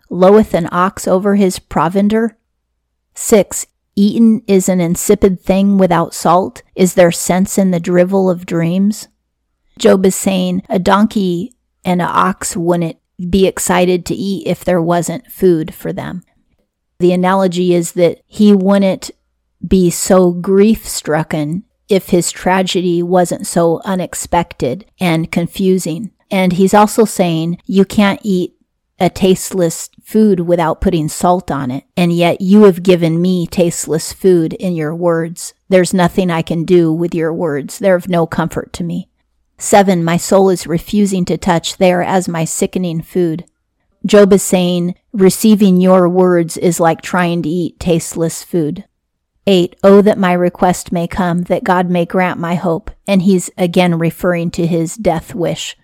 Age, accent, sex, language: 40-59, American, female, English